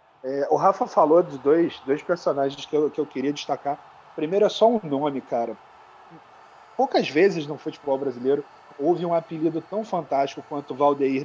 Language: Portuguese